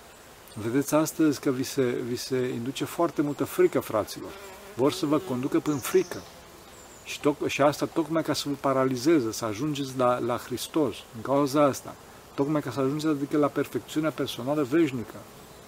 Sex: male